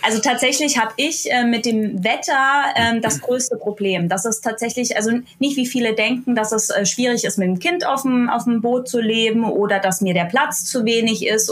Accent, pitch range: German, 195-230 Hz